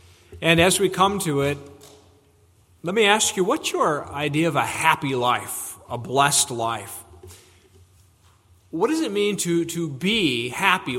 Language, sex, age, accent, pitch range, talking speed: English, male, 40-59, American, 135-180 Hz, 155 wpm